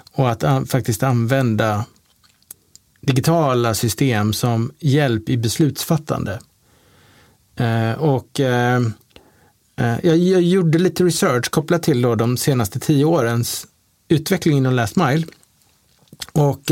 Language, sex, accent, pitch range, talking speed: Swedish, male, Norwegian, 120-155 Hz, 110 wpm